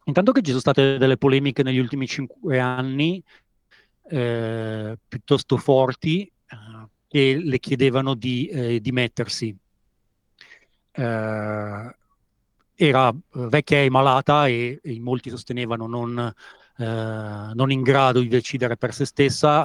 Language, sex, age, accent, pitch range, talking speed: Italian, male, 40-59, native, 115-140 Hz, 120 wpm